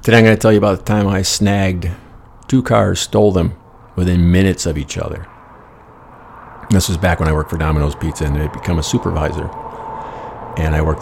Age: 50-69